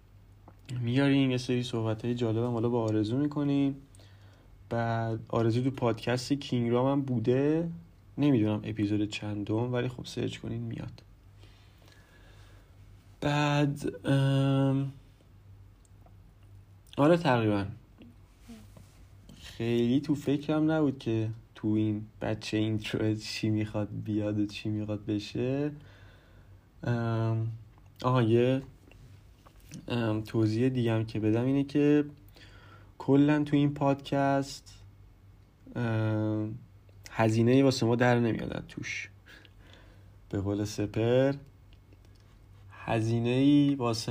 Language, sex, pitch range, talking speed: Persian, male, 100-125 Hz, 95 wpm